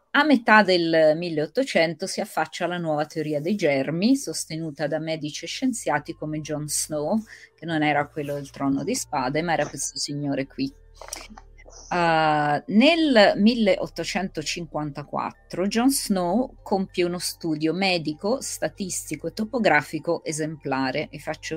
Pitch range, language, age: 150-200 Hz, Italian, 30-49